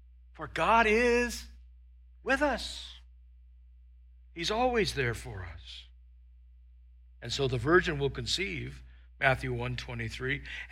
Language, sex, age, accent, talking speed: English, male, 60-79, American, 100 wpm